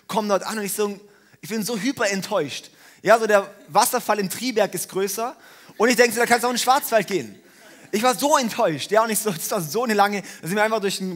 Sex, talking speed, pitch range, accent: male, 260 wpm, 175-220 Hz, German